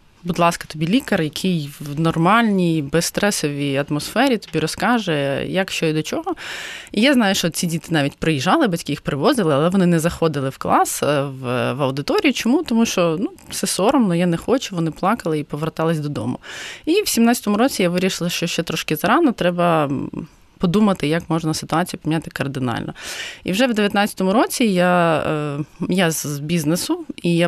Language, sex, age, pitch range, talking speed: Ukrainian, female, 20-39, 155-200 Hz, 170 wpm